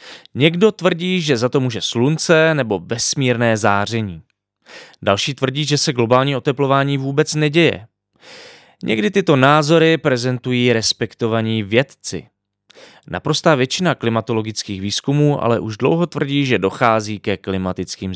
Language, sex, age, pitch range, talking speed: English, male, 20-39, 105-145 Hz, 120 wpm